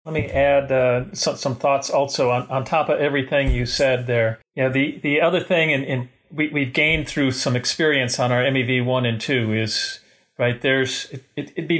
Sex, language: male, English